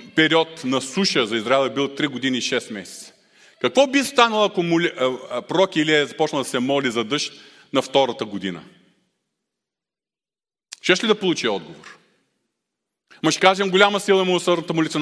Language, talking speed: Bulgarian, 165 wpm